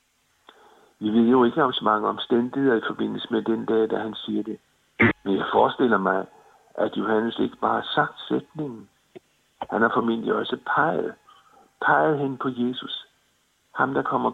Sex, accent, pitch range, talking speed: male, native, 115-140 Hz, 165 wpm